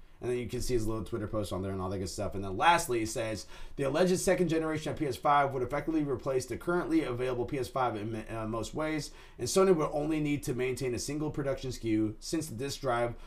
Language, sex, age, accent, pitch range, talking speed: English, male, 30-49, American, 115-160 Hz, 240 wpm